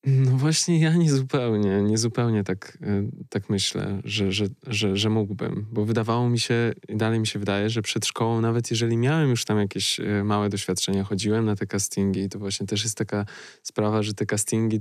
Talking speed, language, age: 195 wpm, Polish, 20-39